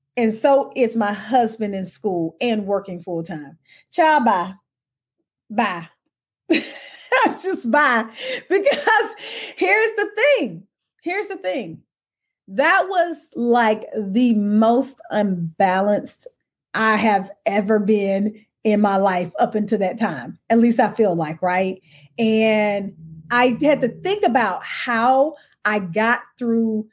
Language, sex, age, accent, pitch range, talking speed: English, female, 30-49, American, 195-245 Hz, 125 wpm